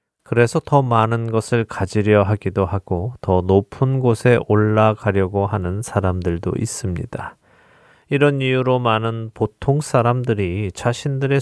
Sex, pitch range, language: male, 100-125 Hz, Korean